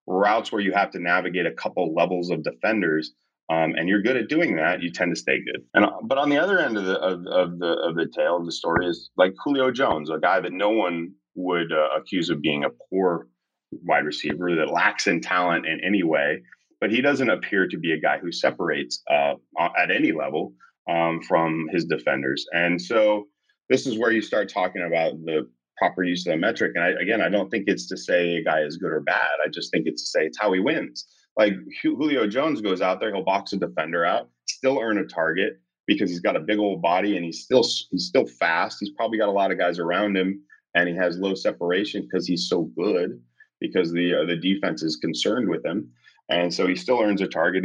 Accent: American